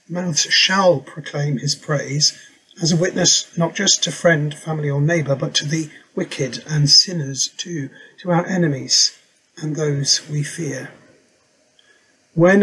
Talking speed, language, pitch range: 145 wpm, English, 140-170 Hz